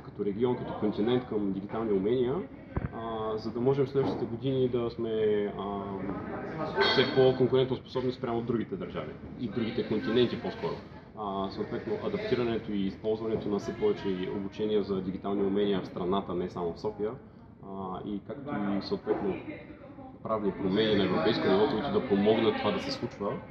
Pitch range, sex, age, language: 100-125 Hz, male, 30-49, Bulgarian